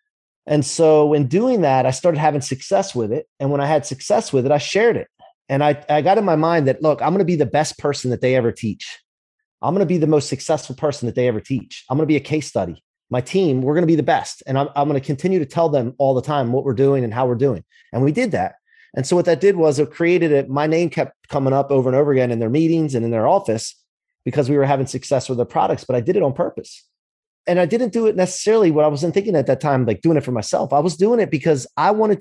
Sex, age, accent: male, 30-49, American